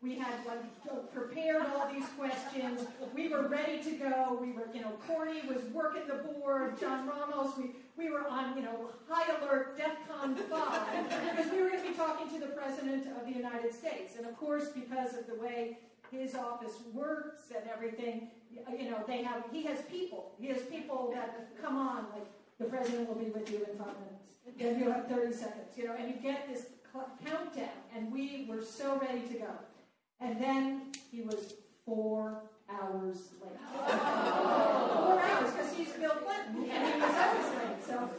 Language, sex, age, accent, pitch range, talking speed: English, female, 50-69, American, 230-275 Hz, 195 wpm